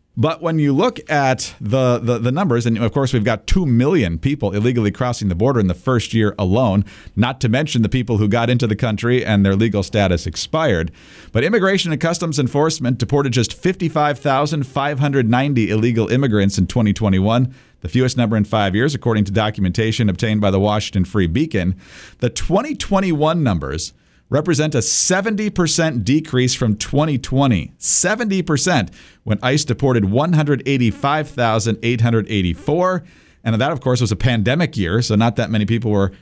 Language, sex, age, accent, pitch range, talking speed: English, male, 50-69, American, 105-140 Hz, 160 wpm